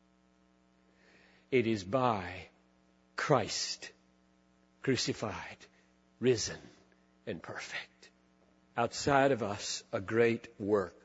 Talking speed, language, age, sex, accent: 75 wpm, English, 50-69, male, American